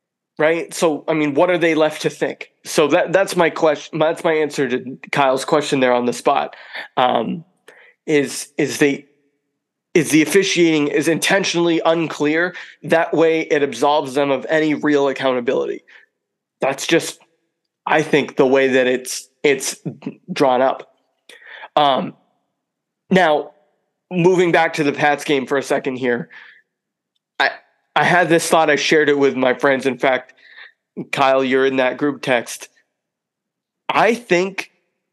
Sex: male